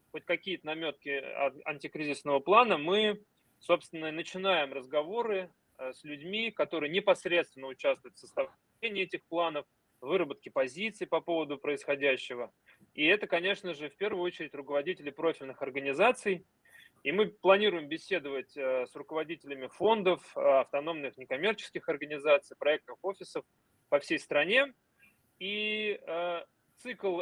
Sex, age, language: male, 20-39, Russian